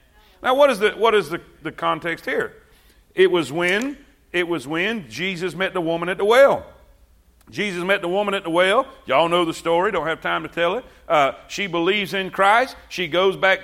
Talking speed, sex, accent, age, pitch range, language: 210 wpm, male, American, 40-59, 180-275 Hz, English